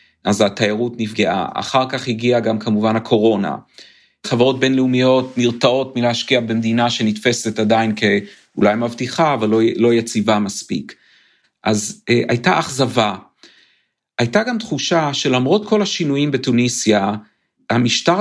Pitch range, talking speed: 115-145 Hz, 110 wpm